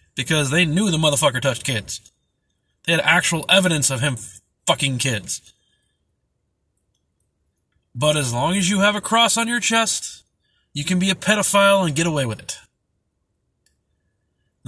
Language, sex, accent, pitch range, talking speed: English, male, American, 120-180 Hz, 150 wpm